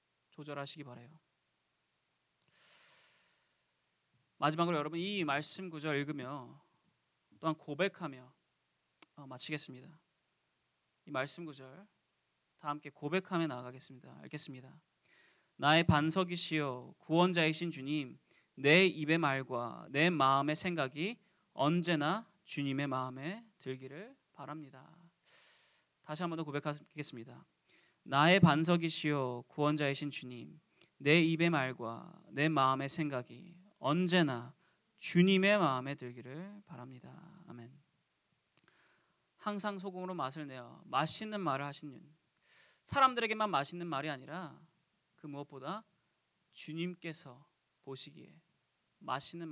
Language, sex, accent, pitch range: Korean, male, native, 135-170 Hz